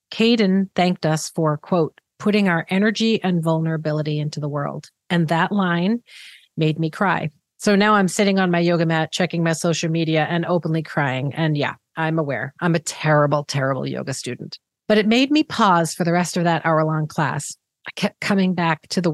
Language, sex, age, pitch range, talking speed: English, female, 40-59, 160-195 Hz, 195 wpm